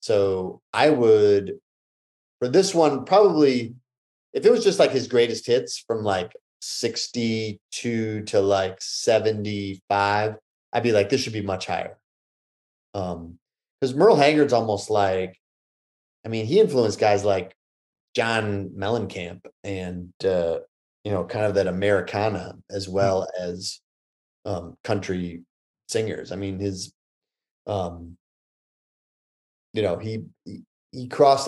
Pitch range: 90-115 Hz